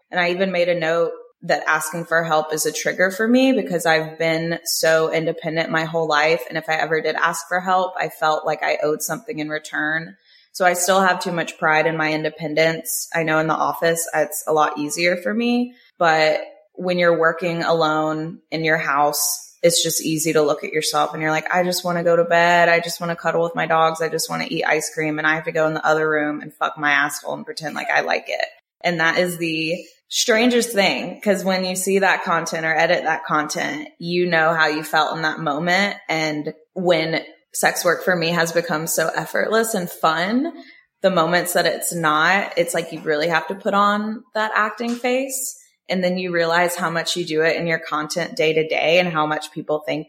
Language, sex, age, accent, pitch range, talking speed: English, female, 20-39, American, 155-180 Hz, 230 wpm